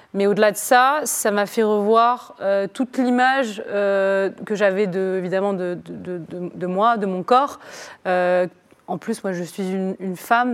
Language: French